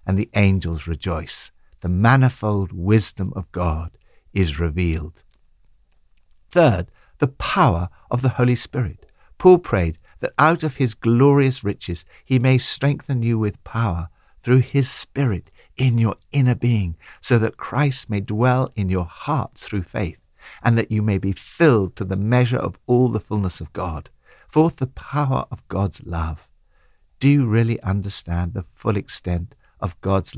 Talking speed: 155 wpm